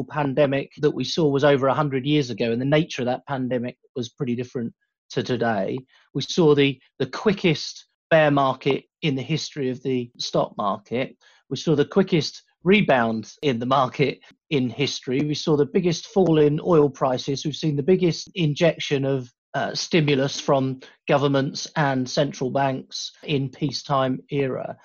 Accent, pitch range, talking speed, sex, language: British, 130-155 Hz, 165 wpm, male, English